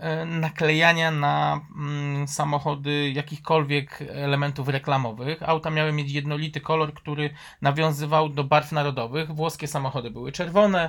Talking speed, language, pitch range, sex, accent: 110 wpm, Polish, 145-170 Hz, male, native